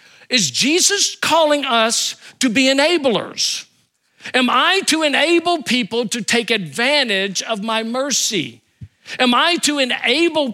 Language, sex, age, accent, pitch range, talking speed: English, male, 50-69, American, 185-260 Hz, 125 wpm